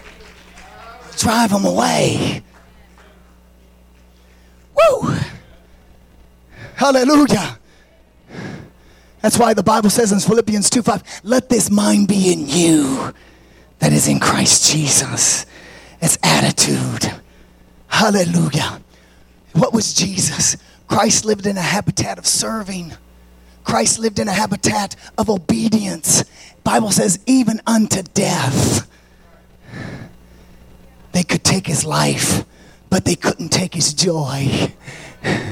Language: English